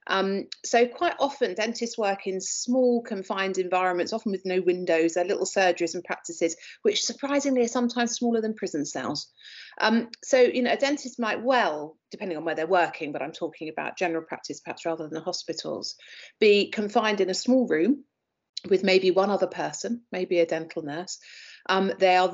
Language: English